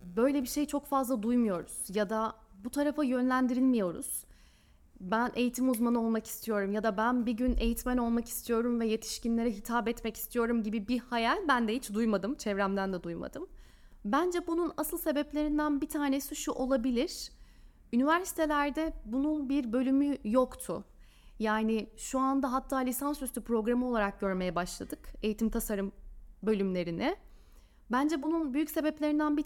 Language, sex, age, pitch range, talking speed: Turkish, female, 10-29, 225-285 Hz, 140 wpm